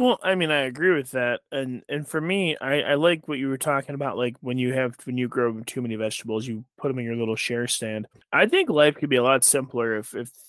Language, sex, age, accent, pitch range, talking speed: English, male, 20-39, American, 120-155 Hz, 270 wpm